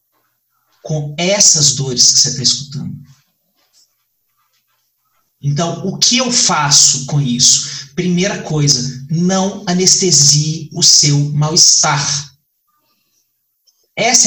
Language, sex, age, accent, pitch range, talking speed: Portuguese, male, 40-59, Brazilian, 145-190 Hz, 95 wpm